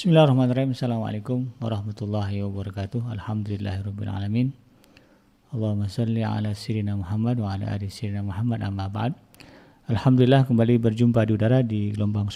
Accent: native